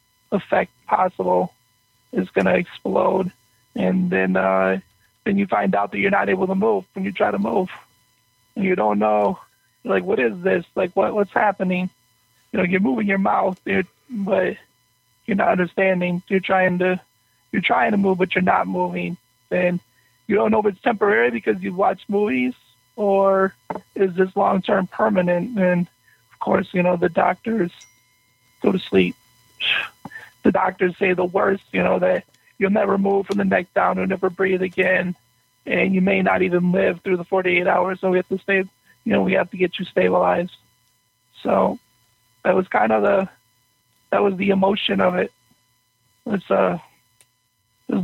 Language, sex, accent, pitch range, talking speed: English, male, American, 125-195 Hz, 175 wpm